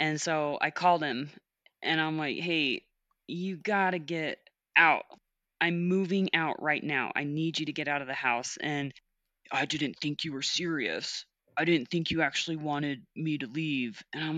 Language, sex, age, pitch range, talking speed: English, female, 20-39, 145-170 Hz, 190 wpm